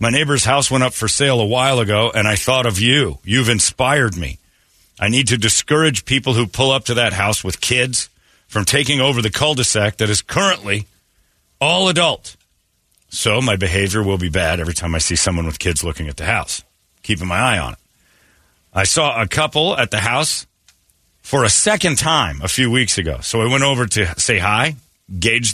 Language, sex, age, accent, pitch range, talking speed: English, male, 40-59, American, 85-125 Hz, 200 wpm